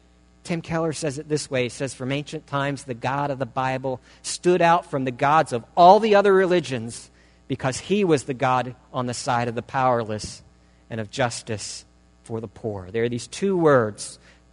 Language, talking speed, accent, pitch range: English, 200 wpm, American, 120-175 Hz